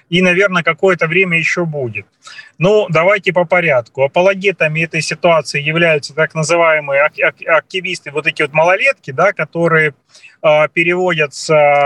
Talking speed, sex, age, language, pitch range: 115 wpm, male, 30-49, Russian, 155-195 Hz